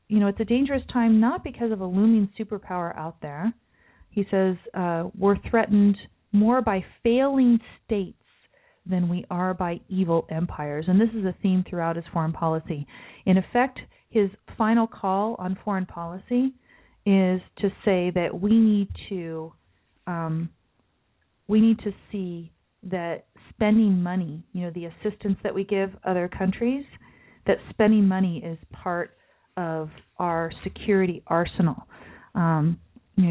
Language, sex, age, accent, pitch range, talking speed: English, female, 40-59, American, 175-215 Hz, 140 wpm